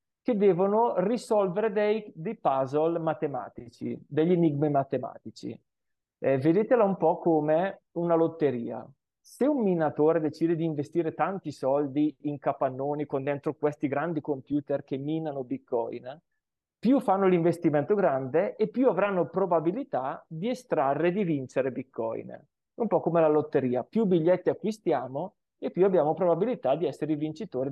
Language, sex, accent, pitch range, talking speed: Italian, male, native, 140-190 Hz, 140 wpm